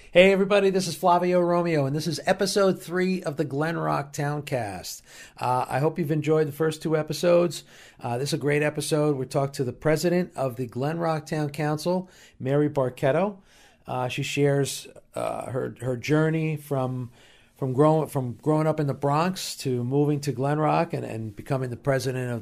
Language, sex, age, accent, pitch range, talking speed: English, male, 40-59, American, 120-155 Hz, 190 wpm